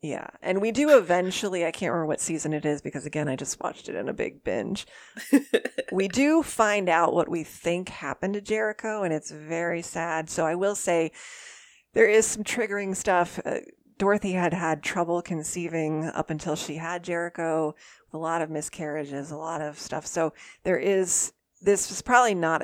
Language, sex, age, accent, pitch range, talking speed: English, female, 30-49, American, 155-190 Hz, 190 wpm